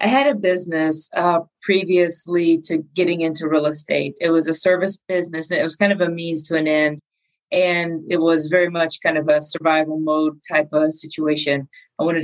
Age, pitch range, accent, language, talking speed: 30-49, 160-200 Hz, American, English, 200 wpm